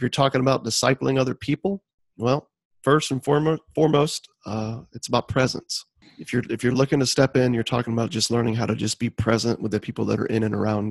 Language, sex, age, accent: English, male, 40-59, American